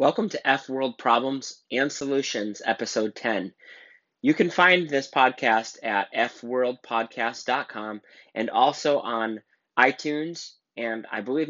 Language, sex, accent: English, male, American